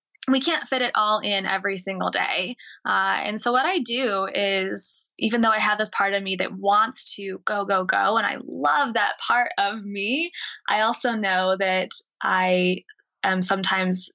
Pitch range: 190-235 Hz